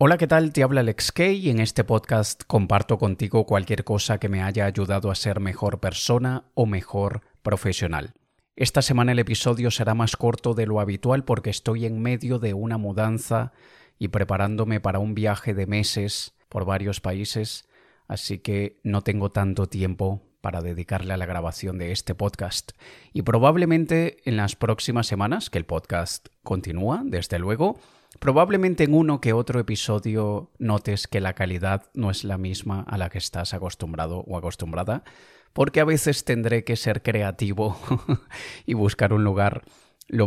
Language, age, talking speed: Spanish, 30-49, 170 wpm